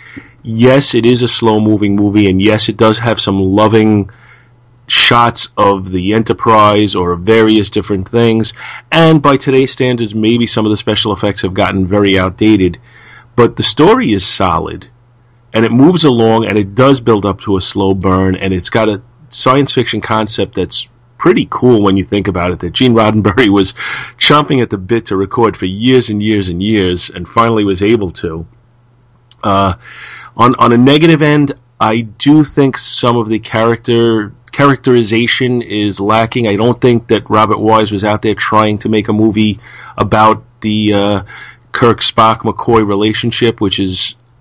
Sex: male